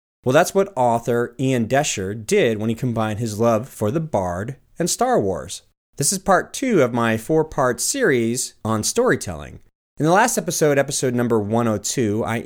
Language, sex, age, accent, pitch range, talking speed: English, male, 30-49, American, 110-145 Hz, 175 wpm